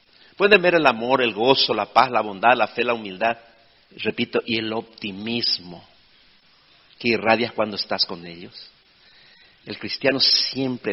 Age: 50-69